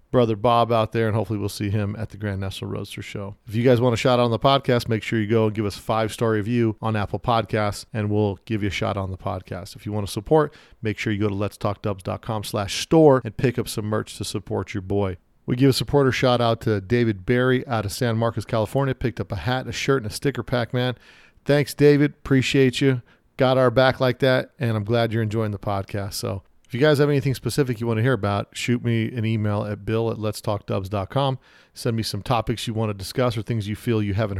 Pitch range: 105-120 Hz